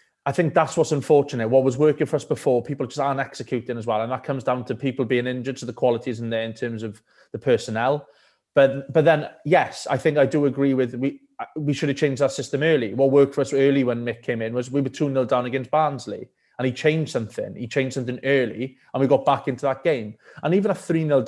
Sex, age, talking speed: male, 20-39, 250 wpm